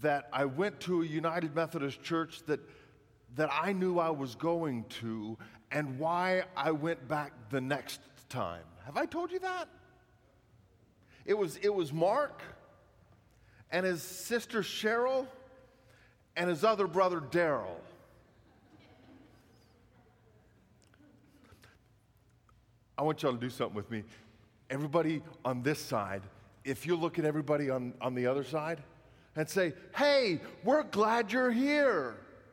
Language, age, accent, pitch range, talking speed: English, 40-59, American, 120-180 Hz, 135 wpm